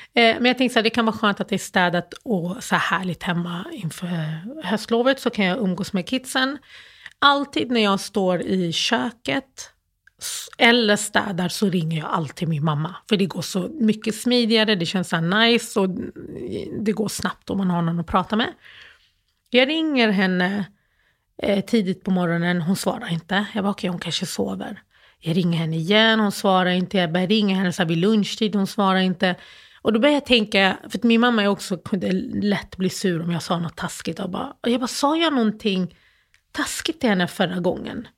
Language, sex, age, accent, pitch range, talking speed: English, female, 30-49, Swedish, 180-235 Hz, 200 wpm